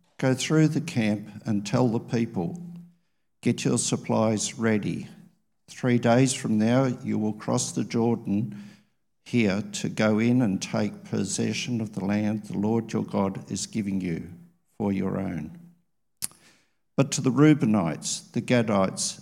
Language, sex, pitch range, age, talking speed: English, male, 105-155 Hz, 60-79, 145 wpm